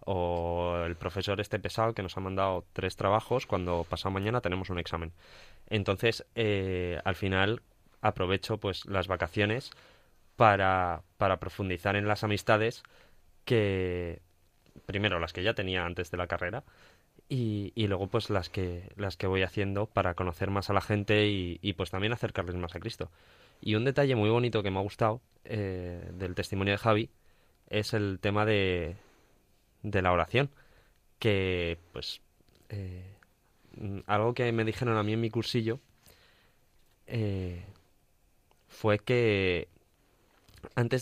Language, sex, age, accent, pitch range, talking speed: Spanish, male, 20-39, Spanish, 90-110 Hz, 150 wpm